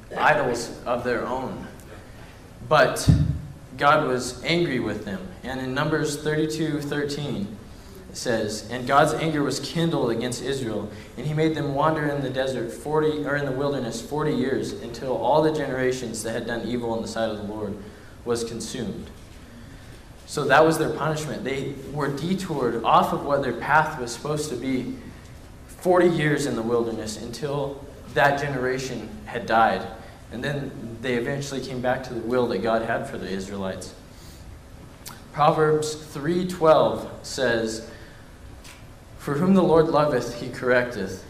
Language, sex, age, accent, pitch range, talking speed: English, male, 20-39, American, 115-150 Hz, 155 wpm